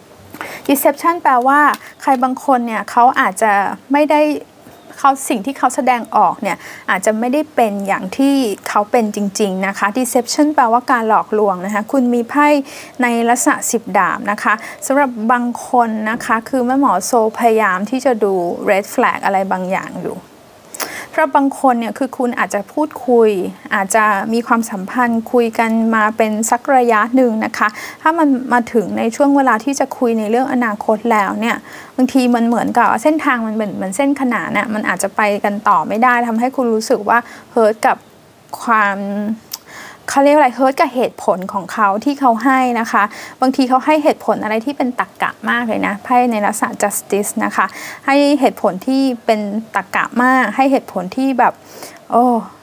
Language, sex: Thai, female